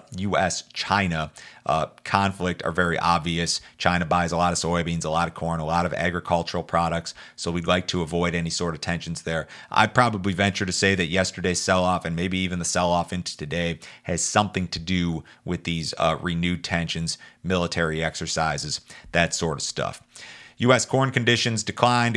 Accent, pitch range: American, 85-100 Hz